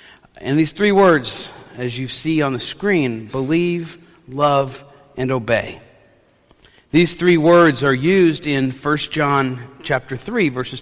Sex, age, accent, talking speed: male, 50-69, American, 140 wpm